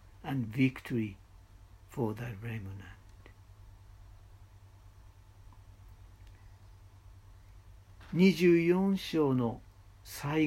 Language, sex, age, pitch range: Japanese, male, 60-79, 95-150 Hz